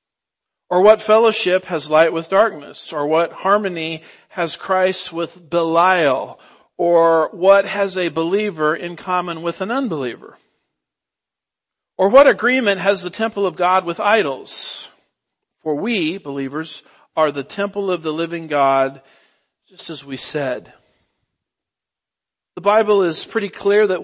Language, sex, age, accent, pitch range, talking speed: English, male, 50-69, American, 150-195 Hz, 135 wpm